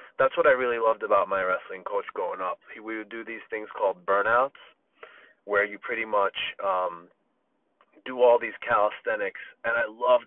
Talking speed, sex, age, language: 175 wpm, male, 30-49, English